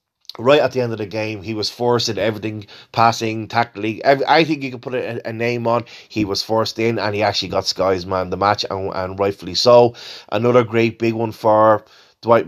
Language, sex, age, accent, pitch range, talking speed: English, male, 20-39, Irish, 95-120 Hz, 215 wpm